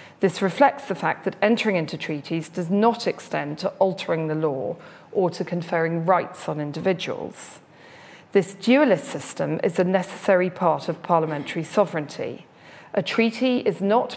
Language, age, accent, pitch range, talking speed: English, 40-59, British, 165-205 Hz, 150 wpm